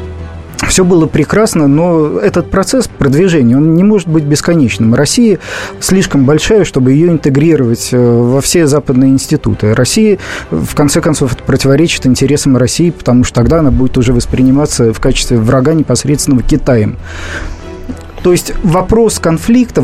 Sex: male